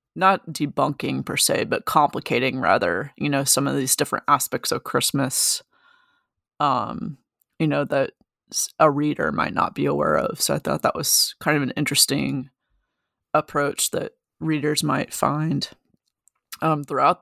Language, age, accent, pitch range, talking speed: English, 20-39, American, 140-165 Hz, 150 wpm